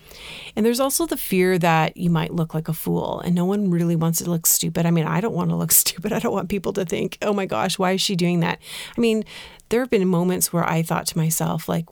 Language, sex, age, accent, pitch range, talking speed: English, female, 30-49, American, 160-190 Hz, 270 wpm